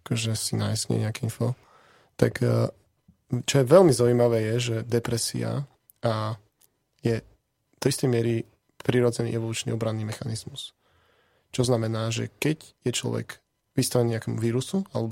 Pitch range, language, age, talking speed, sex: 115-125 Hz, Slovak, 20-39, 125 wpm, male